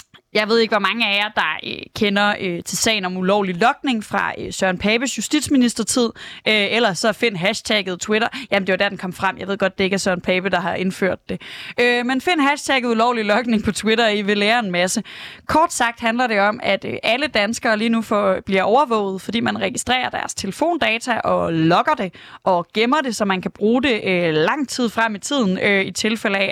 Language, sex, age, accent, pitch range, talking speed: Danish, female, 20-39, native, 200-255 Hz, 225 wpm